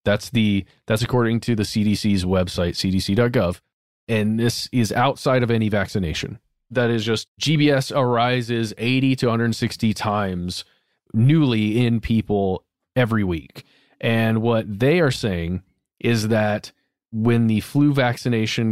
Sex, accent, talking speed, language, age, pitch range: male, American, 130 wpm, English, 30-49, 100-125 Hz